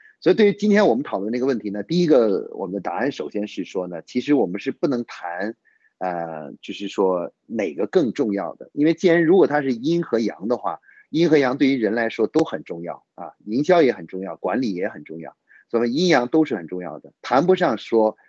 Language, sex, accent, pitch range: Chinese, male, native, 100-160 Hz